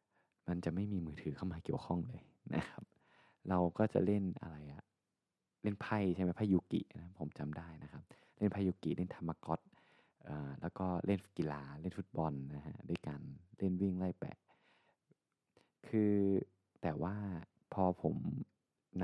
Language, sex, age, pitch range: Thai, male, 20-39, 75-95 Hz